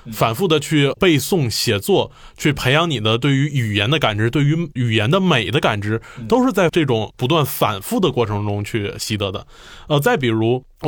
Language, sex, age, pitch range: Chinese, male, 20-39, 115-170 Hz